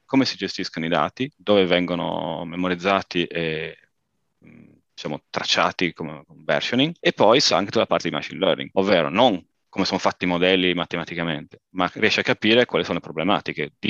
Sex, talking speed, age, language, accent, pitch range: male, 170 wpm, 30-49, Italian, native, 85-110 Hz